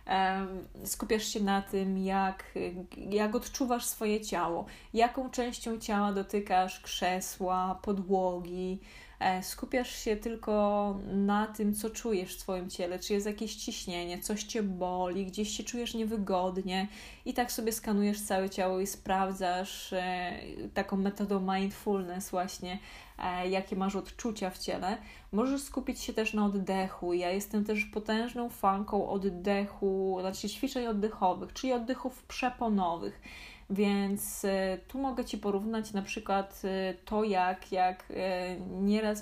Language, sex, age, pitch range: Polish, female, 20-39, 190-220 Hz